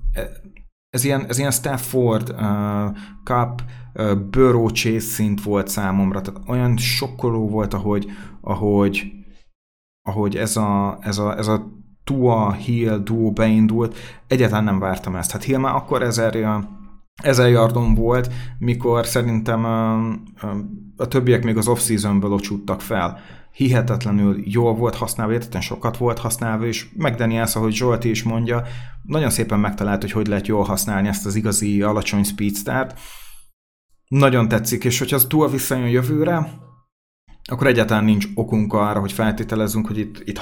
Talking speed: 140 wpm